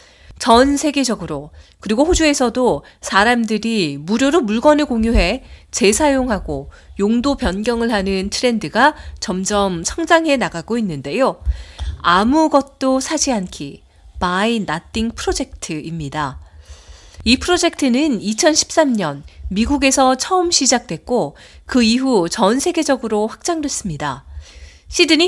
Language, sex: Korean, female